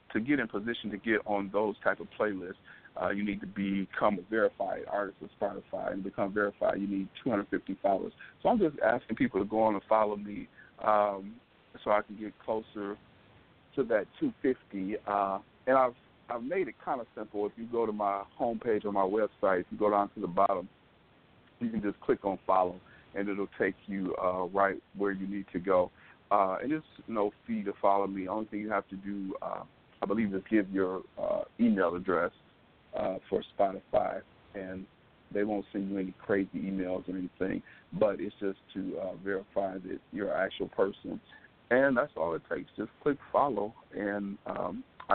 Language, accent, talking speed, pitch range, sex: English, American, 195 wpm, 100-110 Hz, male